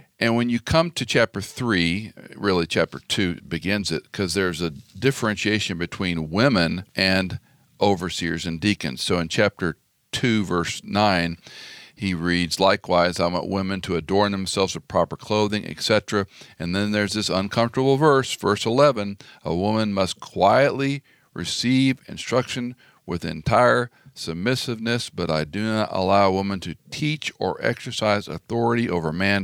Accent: American